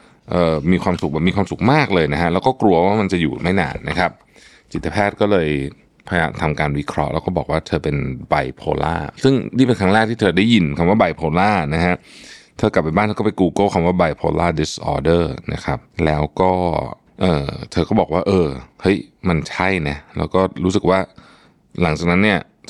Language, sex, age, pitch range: Thai, male, 20-39, 80-100 Hz